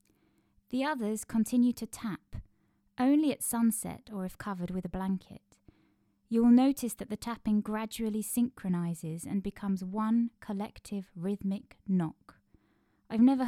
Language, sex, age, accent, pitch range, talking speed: English, female, 20-39, British, 185-230 Hz, 135 wpm